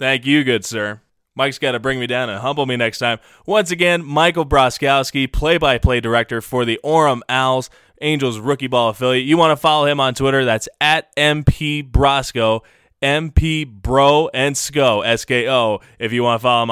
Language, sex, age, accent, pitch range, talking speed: English, male, 20-39, American, 120-155 Hz, 175 wpm